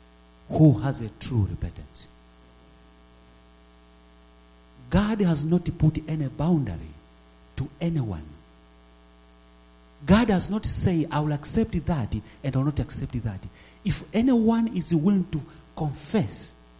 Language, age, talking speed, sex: English, 40-59, 120 wpm, male